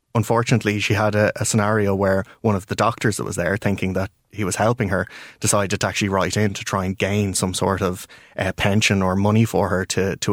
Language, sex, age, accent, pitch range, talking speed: English, male, 20-39, Irish, 95-110 Hz, 230 wpm